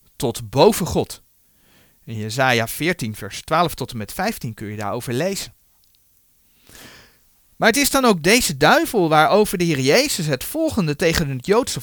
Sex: male